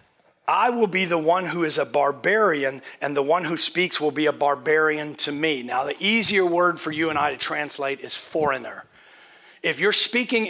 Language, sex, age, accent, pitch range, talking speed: English, male, 40-59, American, 145-195 Hz, 200 wpm